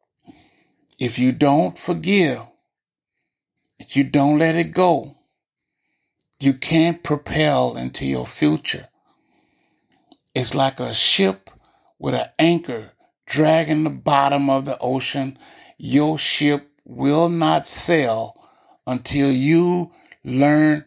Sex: male